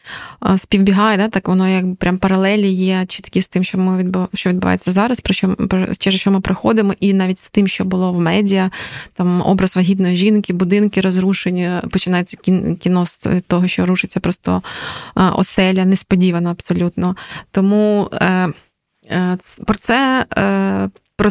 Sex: female